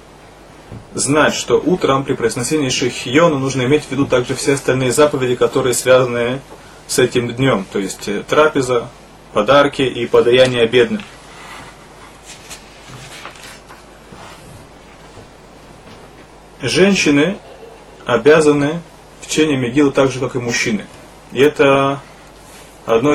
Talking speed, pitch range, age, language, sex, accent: 100 wpm, 125-150 Hz, 30-49, Russian, male, native